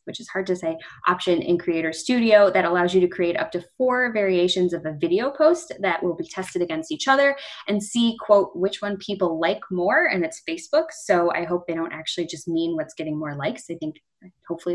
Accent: American